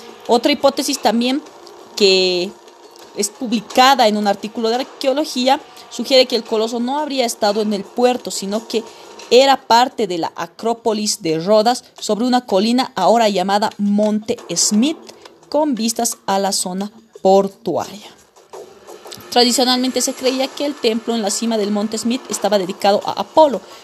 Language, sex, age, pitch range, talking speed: Spanish, female, 30-49, 200-255 Hz, 150 wpm